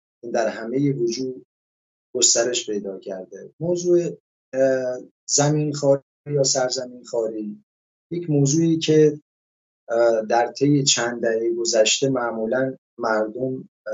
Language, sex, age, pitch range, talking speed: English, male, 30-49, 110-145 Hz, 100 wpm